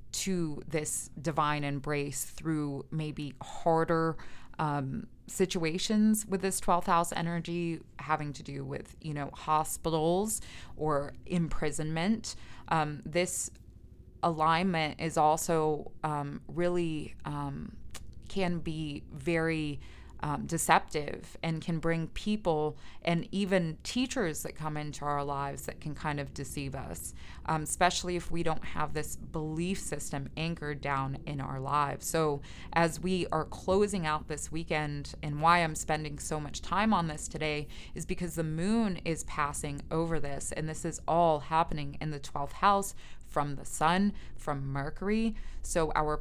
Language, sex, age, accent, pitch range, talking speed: English, female, 20-39, American, 145-170 Hz, 145 wpm